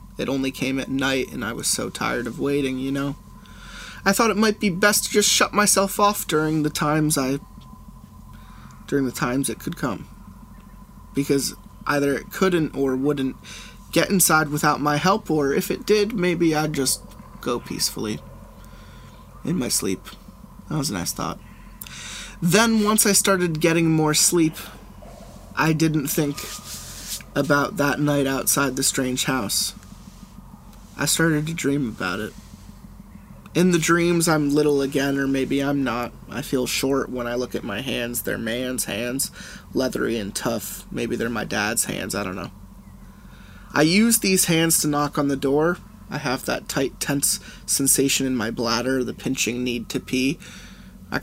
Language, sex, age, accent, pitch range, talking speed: English, male, 20-39, American, 135-165 Hz, 165 wpm